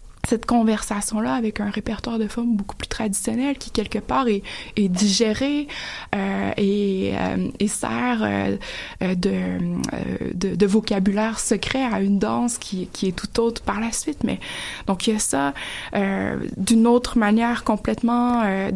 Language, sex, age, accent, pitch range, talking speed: French, female, 20-39, Canadian, 195-235 Hz, 165 wpm